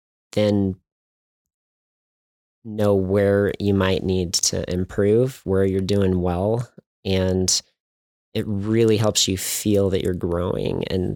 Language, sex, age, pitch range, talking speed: English, male, 20-39, 90-100 Hz, 120 wpm